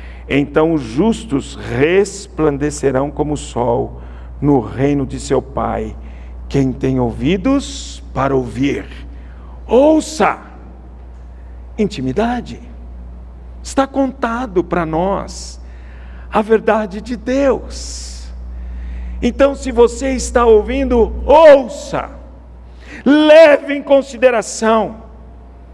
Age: 60-79